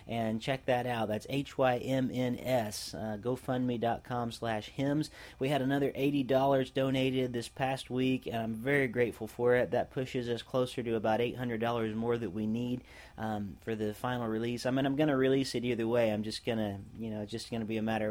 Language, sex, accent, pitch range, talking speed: English, male, American, 110-125 Hz, 205 wpm